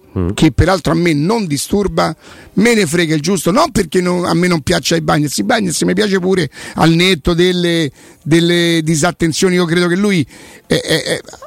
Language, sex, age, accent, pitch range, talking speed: Italian, male, 50-69, native, 165-200 Hz, 190 wpm